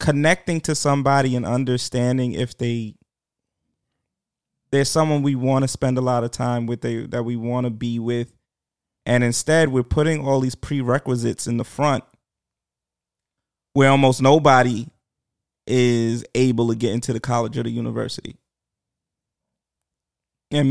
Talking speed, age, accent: 140 wpm, 20-39, American